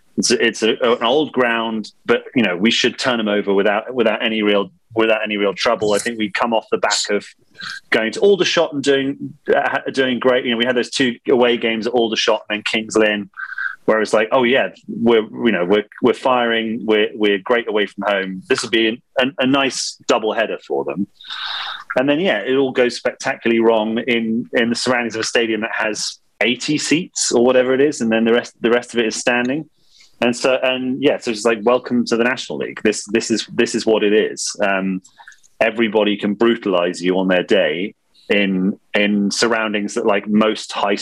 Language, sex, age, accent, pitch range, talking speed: English, male, 30-49, British, 105-120 Hz, 215 wpm